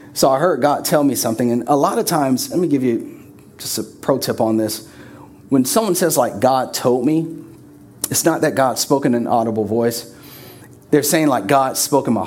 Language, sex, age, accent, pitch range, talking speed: English, male, 30-49, American, 115-140 Hz, 220 wpm